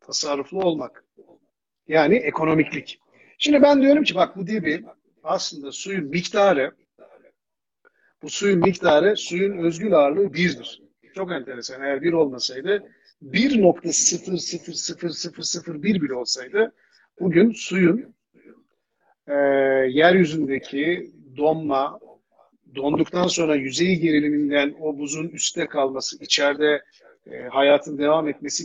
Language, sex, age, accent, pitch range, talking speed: Turkish, male, 50-69, native, 140-195 Hz, 100 wpm